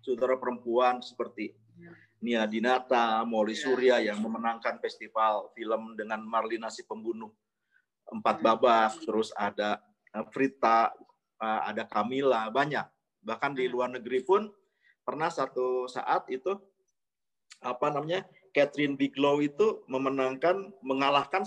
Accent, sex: native, male